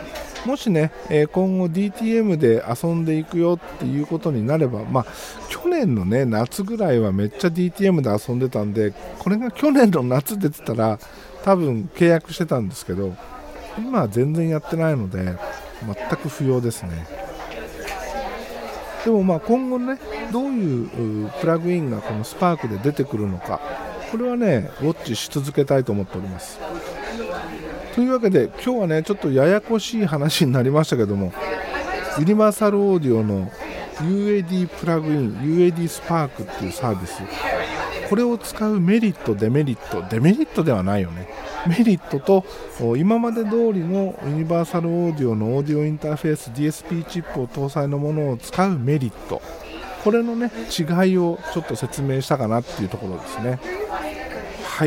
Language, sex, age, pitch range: Japanese, male, 50-69, 125-195 Hz